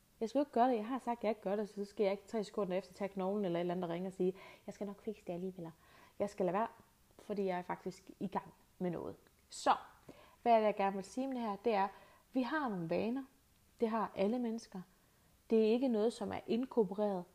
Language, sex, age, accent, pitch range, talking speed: Danish, female, 30-49, native, 195-245 Hz, 265 wpm